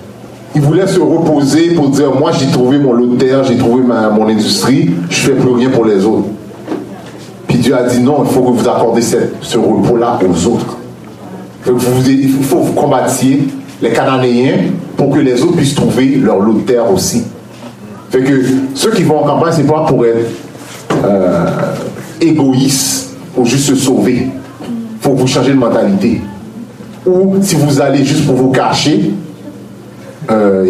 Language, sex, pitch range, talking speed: French, male, 125-155 Hz, 180 wpm